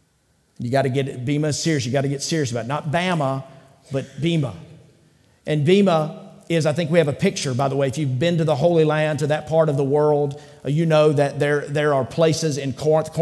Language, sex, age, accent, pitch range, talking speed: English, male, 40-59, American, 135-165 Hz, 235 wpm